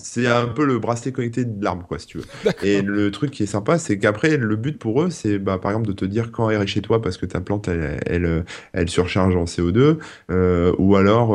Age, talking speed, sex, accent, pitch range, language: 20-39, 260 wpm, male, French, 90-105 Hz, French